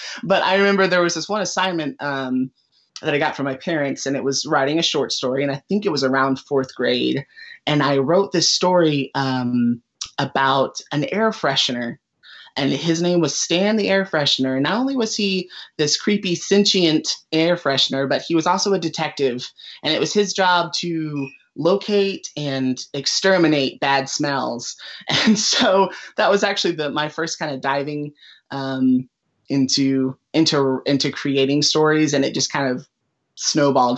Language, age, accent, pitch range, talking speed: English, 30-49, American, 135-160 Hz, 175 wpm